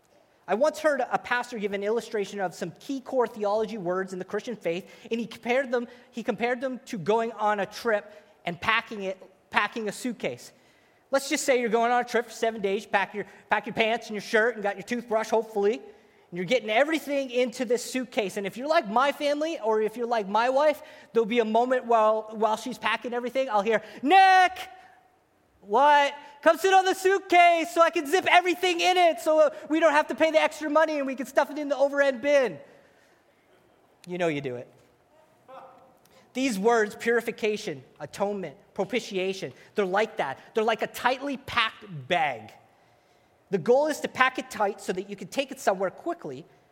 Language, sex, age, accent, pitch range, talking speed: English, male, 30-49, American, 210-275 Hz, 200 wpm